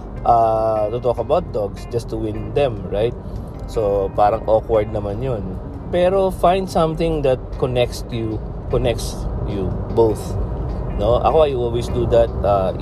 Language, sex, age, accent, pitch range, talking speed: Filipino, male, 20-39, native, 95-130 Hz, 145 wpm